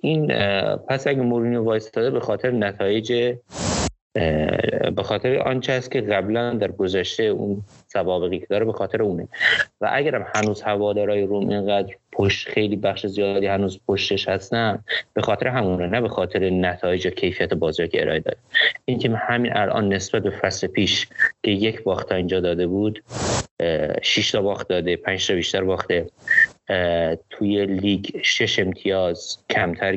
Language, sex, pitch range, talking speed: Persian, male, 95-110 Hz, 155 wpm